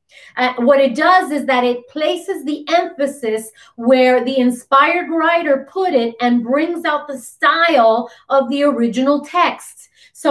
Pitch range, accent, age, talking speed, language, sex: 240-290 Hz, American, 30-49, 150 wpm, English, female